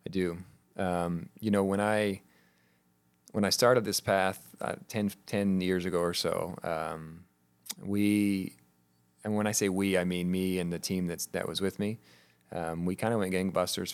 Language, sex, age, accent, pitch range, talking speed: English, male, 30-49, American, 80-95 Hz, 185 wpm